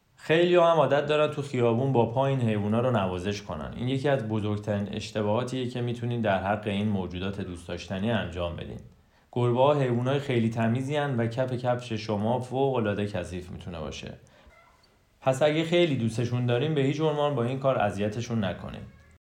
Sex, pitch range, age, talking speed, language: male, 100-125 Hz, 30-49, 165 wpm, Persian